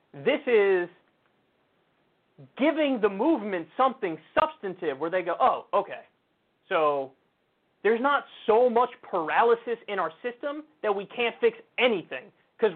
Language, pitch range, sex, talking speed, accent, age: English, 170-245 Hz, male, 125 wpm, American, 30-49